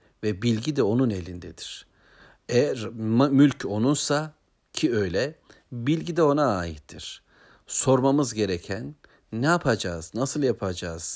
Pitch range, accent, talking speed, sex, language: 100-135 Hz, native, 110 wpm, male, Turkish